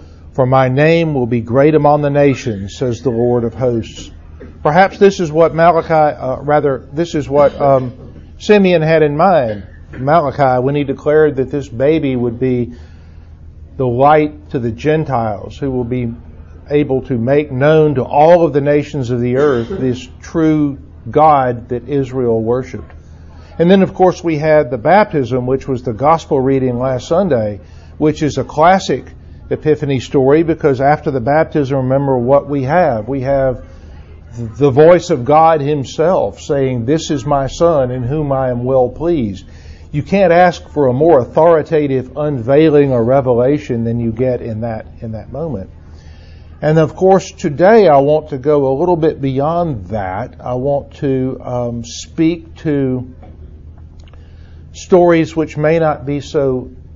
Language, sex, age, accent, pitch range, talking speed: English, male, 50-69, American, 115-150 Hz, 160 wpm